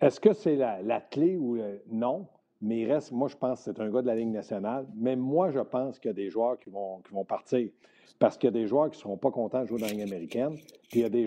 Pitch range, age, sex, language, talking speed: 115-140 Hz, 50-69, male, French, 310 wpm